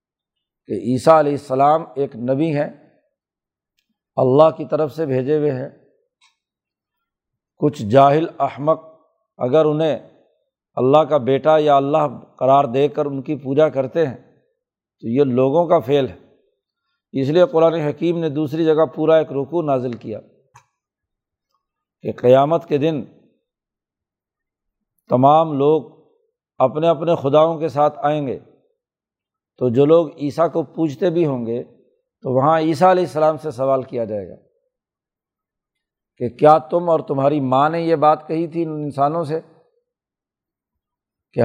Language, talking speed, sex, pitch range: Urdu, 140 wpm, male, 135-165 Hz